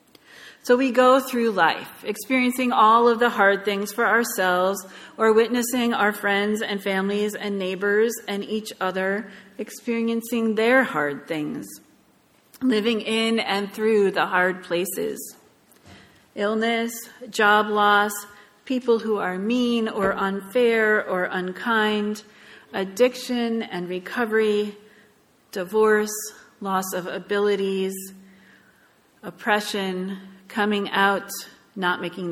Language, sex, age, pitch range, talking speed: English, female, 40-59, 185-225 Hz, 110 wpm